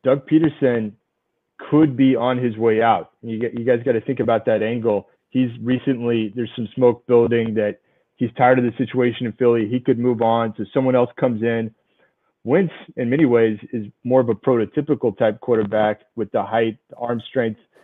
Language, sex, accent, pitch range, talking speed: English, male, American, 115-135 Hz, 185 wpm